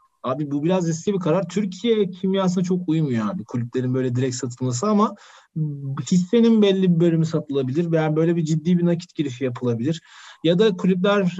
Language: Turkish